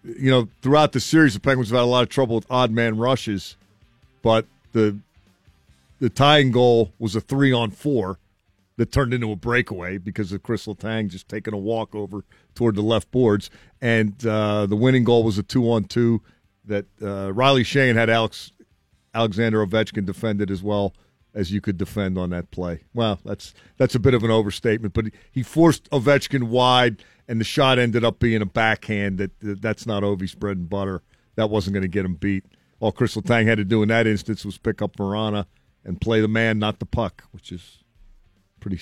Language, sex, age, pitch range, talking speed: English, male, 40-59, 100-120 Hz, 200 wpm